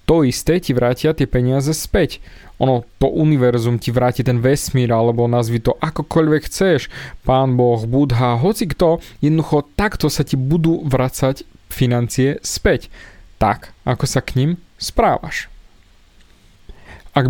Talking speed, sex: 135 wpm, male